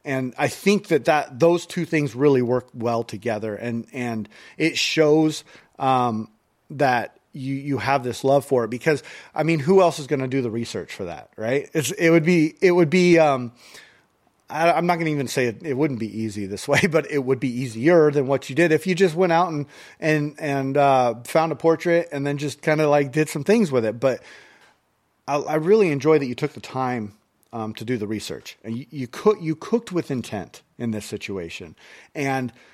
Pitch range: 125-155 Hz